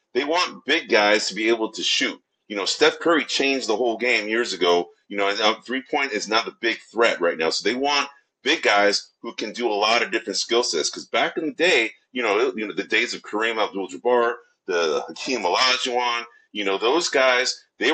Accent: American